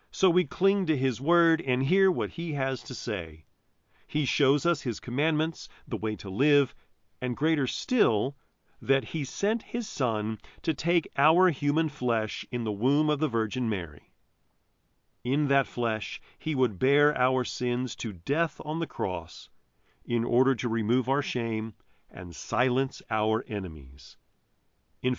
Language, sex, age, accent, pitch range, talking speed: English, male, 40-59, American, 100-145 Hz, 155 wpm